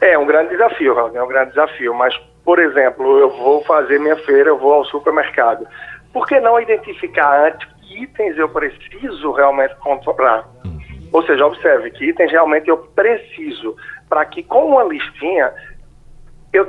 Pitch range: 145-230 Hz